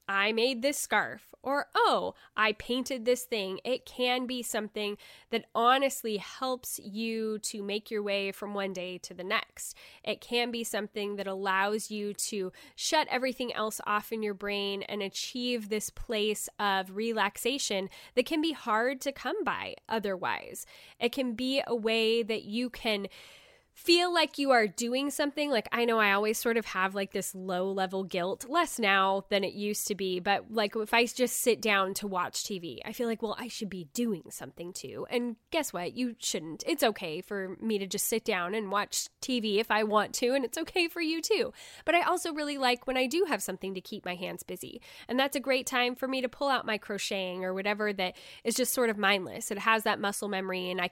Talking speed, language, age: 210 wpm, English, 10-29